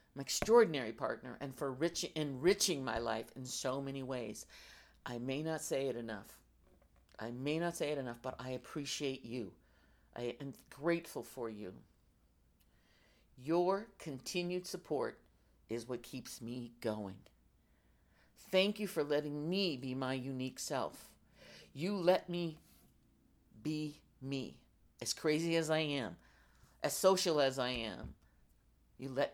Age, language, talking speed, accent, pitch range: 50-69, English, 140 wpm, American, 115-165 Hz